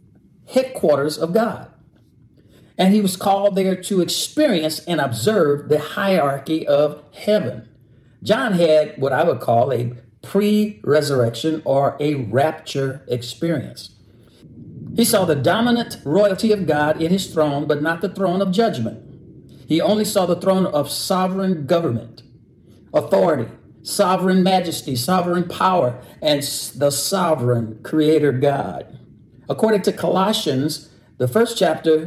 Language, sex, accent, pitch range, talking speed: English, male, American, 135-185 Hz, 125 wpm